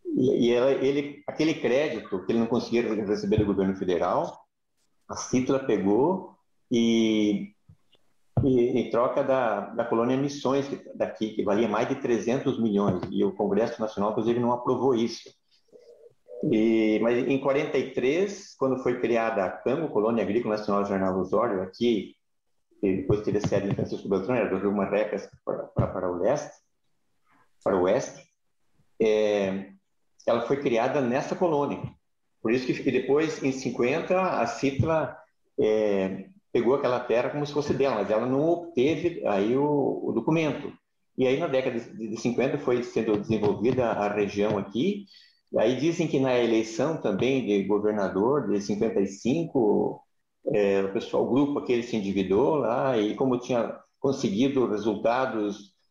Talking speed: 155 wpm